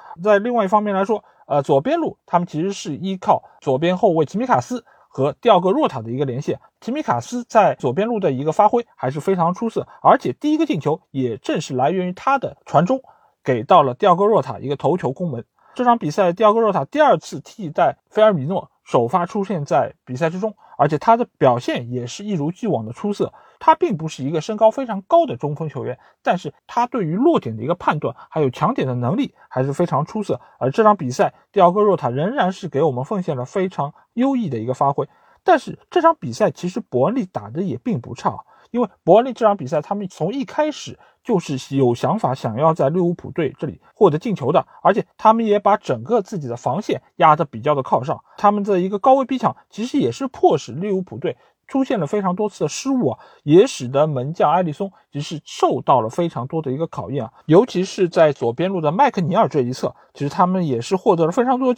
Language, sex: Chinese, male